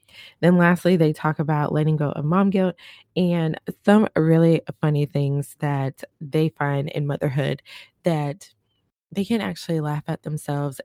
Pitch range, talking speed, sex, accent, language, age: 145-170 Hz, 150 wpm, female, American, English, 20-39